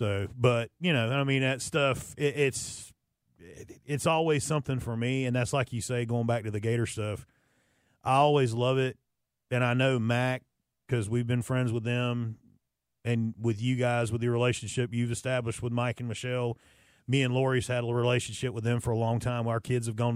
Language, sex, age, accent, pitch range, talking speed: English, male, 30-49, American, 115-130 Hz, 200 wpm